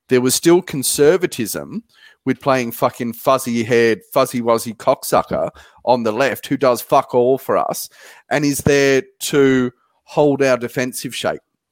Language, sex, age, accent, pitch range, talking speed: English, male, 30-49, Australian, 115-135 Hz, 150 wpm